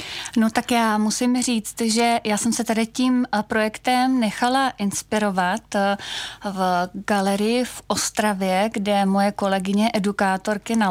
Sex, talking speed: female, 125 wpm